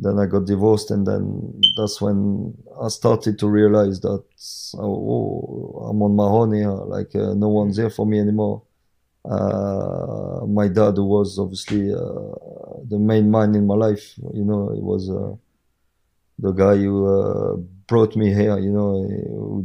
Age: 20-39